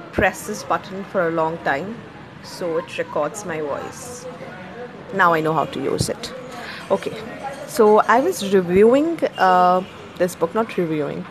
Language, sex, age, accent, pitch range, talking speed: English, female, 30-49, Indian, 160-195 Hz, 155 wpm